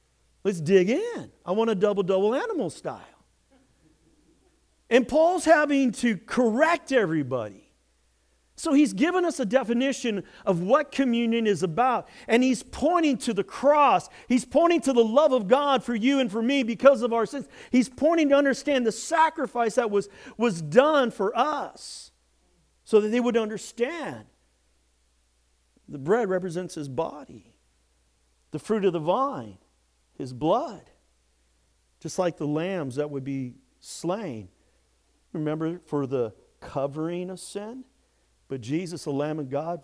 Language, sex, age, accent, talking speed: English, male, 50-69, American, 145 wpm